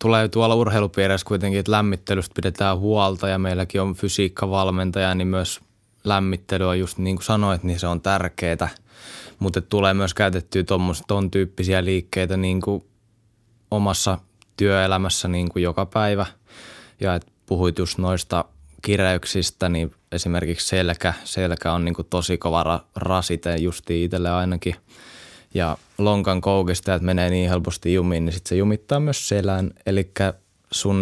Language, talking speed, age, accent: Finnish, 145 wpm, 20-39, native